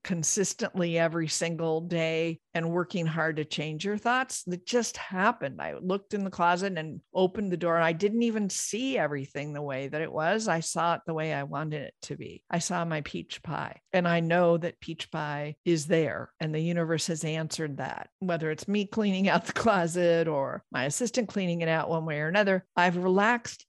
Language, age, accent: English, 50-69, American